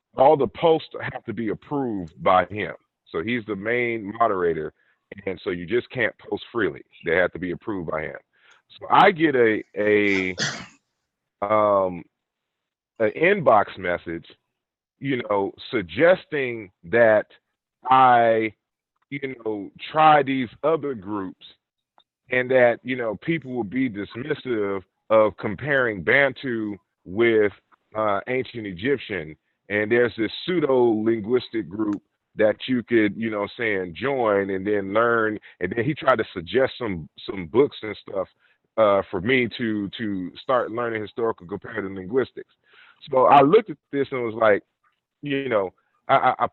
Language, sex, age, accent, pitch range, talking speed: English, male, 30-49, American, 100-130 Hz, 145 wpm